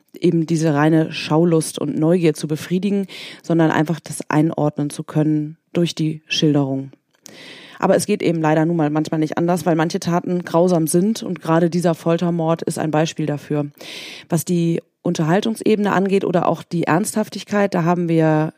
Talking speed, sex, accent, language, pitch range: 165 wpm, female, German, German, 155-180 Hz